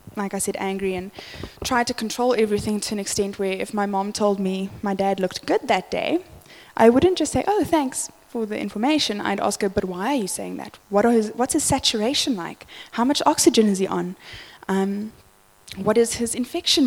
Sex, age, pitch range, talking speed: female, 10-29, 190-230 Hz, 205 wpm